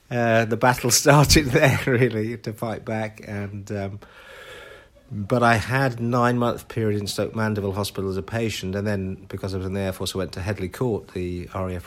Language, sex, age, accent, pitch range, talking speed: English, male, 50-69, British, 90-100 Hz, 200 wpm